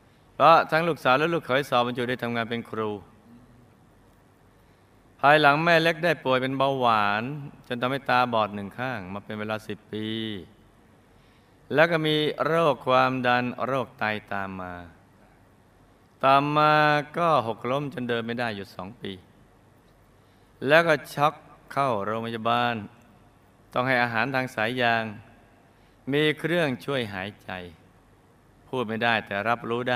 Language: Thai